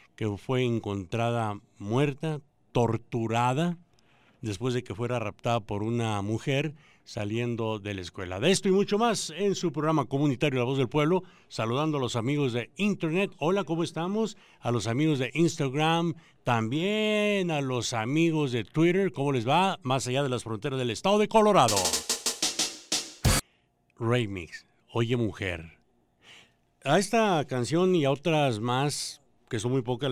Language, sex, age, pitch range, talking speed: English, male, 60-79, 110-165 Hz, 150 wpm